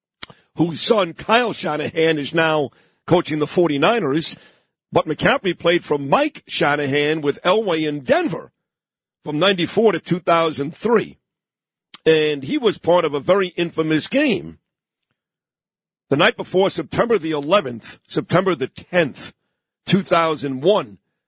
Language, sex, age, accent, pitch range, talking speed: English, male, 50-69, American, 145-180 Hz, 120 wpm